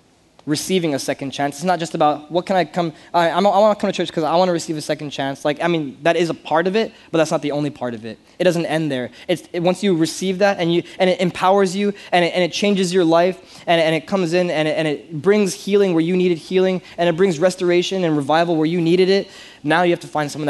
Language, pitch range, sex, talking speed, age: English, 155-185 Hz, male, 285 wpm, 20-39